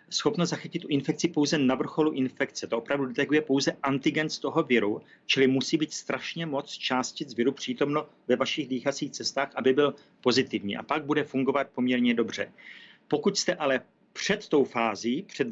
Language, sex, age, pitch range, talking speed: Czech, male, 40-59, 130-145 Hz, 170 wpm